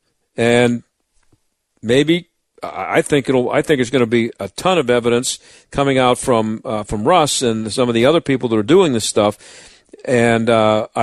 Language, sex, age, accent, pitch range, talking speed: English, male, 50-69, American, 120-145 Hz, 185 wpm